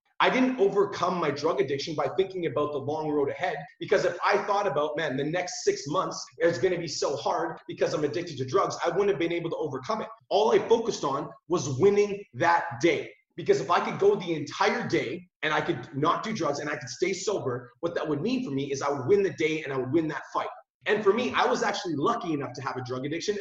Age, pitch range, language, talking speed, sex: 30-49, 150-205 Hz, English, 255 wpm, male